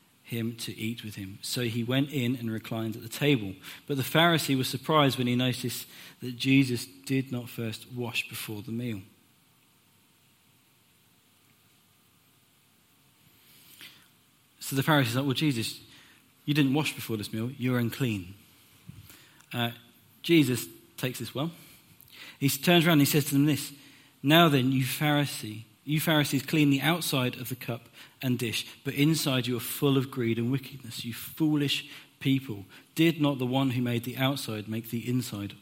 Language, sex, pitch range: English, male, 115-145 Hz